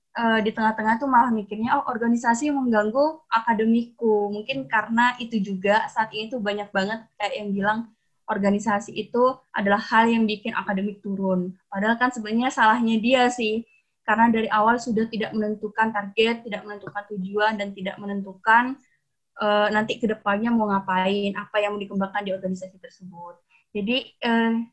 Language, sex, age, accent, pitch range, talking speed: Indonesian, female, 20-39, native, 205-235 Hz, 155 wpm